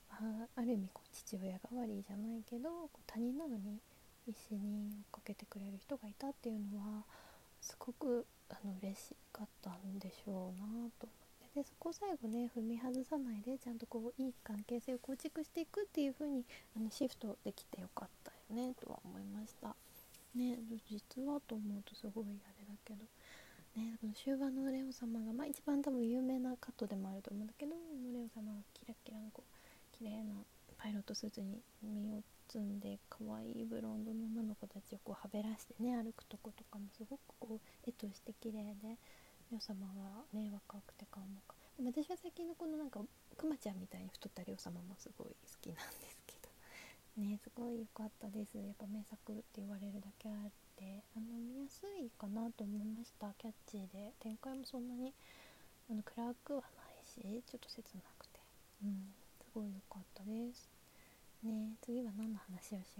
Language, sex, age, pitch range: Japanese, female, 20-39, 205-245 Hz